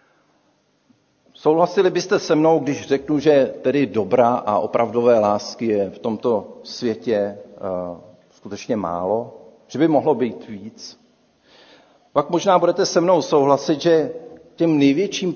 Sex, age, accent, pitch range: male, 50-69, native, 115-170 Hz